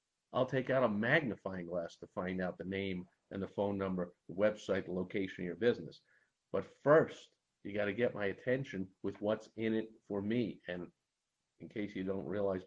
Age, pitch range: 50-69, 95-120 Hz